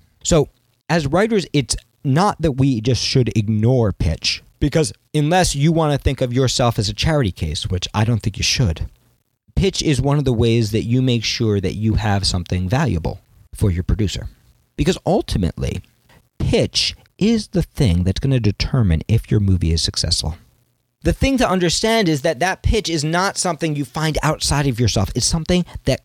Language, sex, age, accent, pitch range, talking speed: English, male, 40-59, American, 90-130 Hz, 185 wpm